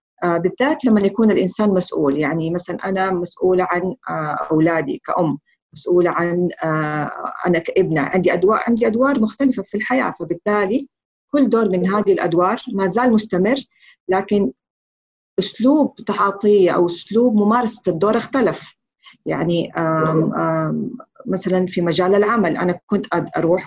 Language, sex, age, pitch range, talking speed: Arabic, female, 40-59, 175-220 Hz, 120 wpm